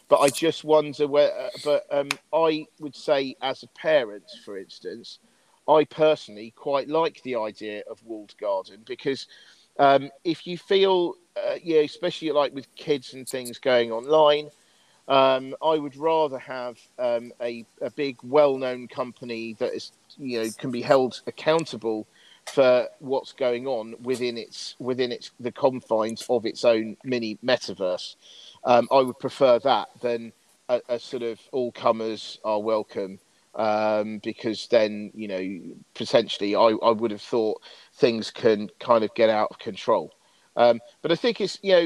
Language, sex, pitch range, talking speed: English, male, 120-155 Hz, 165 wpm